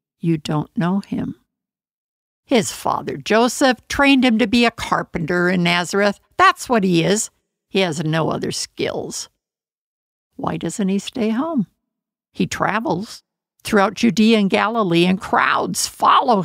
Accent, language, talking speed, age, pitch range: American, English, 140 wpm, 60-79, 170-230 Hz